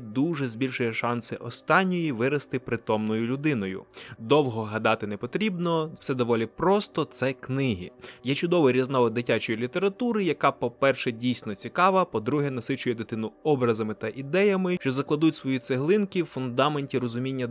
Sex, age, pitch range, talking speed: male, 20-39, 125-160 Hz, 135 wpm